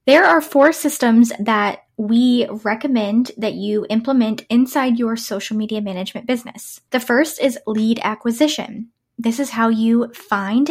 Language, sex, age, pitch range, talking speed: English, female, 10-29, 220-275 Hz, 145 wpm